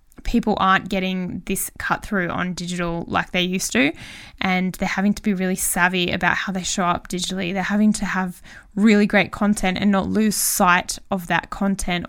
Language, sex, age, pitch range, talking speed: English, female, 10-29, 180-215 Hz, 195 wpm